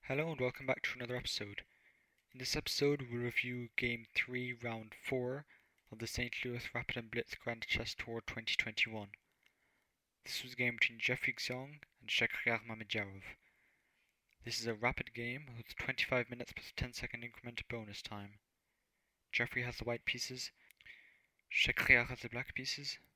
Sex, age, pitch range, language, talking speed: male, 20-39, 110-125 Hz, English, 160 wpm